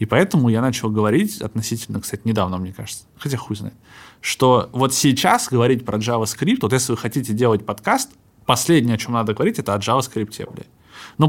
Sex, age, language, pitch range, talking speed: male, 20-39, Russian, 110-140 Hz, 185 wpm